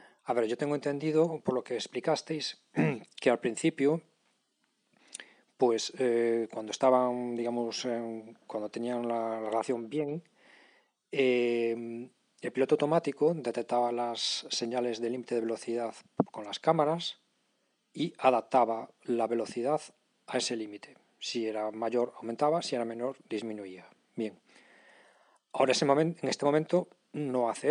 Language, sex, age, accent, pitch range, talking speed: Spanish, male, 40-59, Spanish, 120-140 Hz, 130 wpm